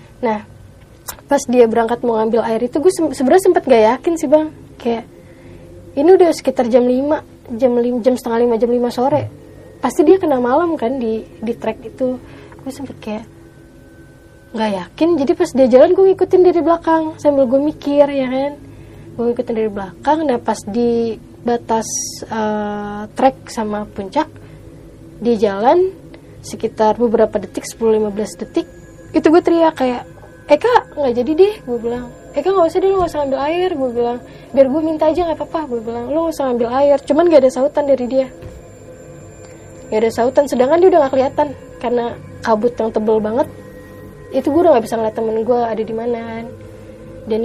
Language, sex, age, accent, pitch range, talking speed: Indonesian, female, 20-39, native, 225-295 Hz, 175 wpm